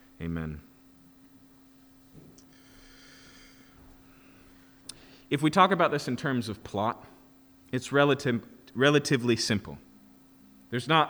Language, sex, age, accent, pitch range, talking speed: English, male, 30-49, American, 130-170 Hz, 80 wpm